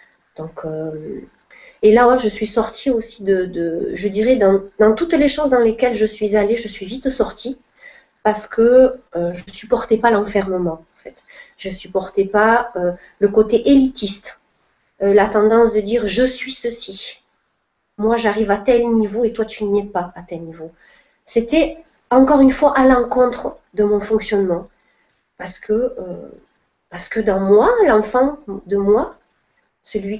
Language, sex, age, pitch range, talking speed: French, female, 30-49, 195-250 Hz, 175 wpm